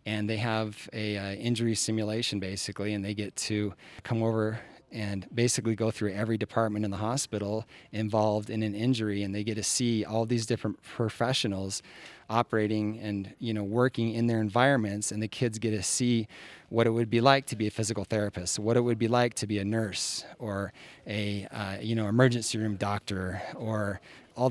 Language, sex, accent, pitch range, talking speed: English, male, American, 105-115 Hz, 195 wpm